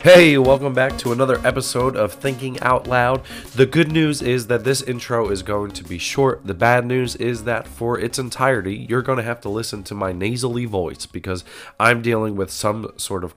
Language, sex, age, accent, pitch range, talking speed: English, male, 30-49, American, 105-130 Hz, 210 wpm